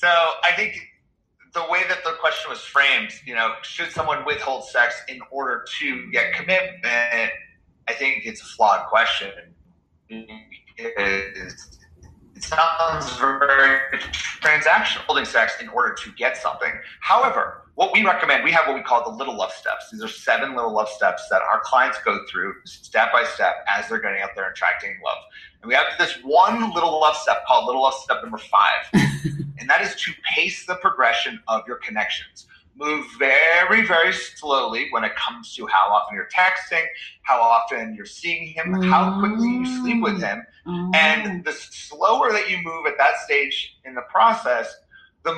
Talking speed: 180 wpm